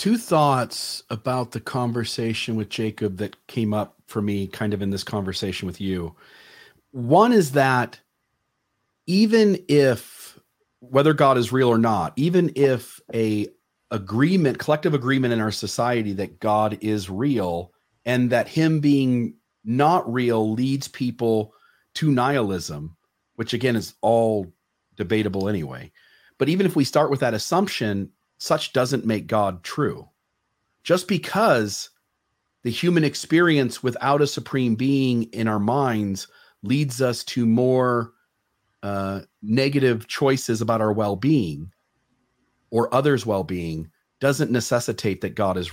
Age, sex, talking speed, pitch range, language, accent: 40-59, male, 135 wpm, 105-135 Hz, English, American